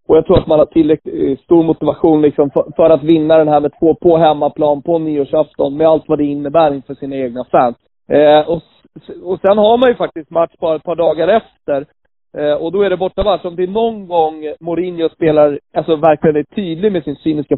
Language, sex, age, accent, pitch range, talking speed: Swedish, male, 30-49, native, 150-220 Hz, 225 wpm